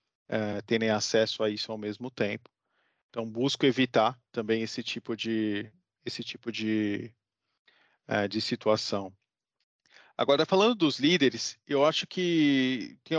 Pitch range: 110-145 Hz